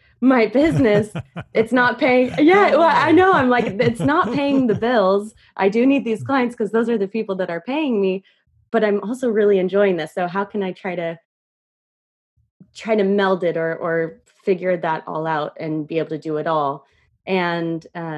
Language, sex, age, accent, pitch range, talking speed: English, female, 20-39, American, 165-205 Hz, 200 wpm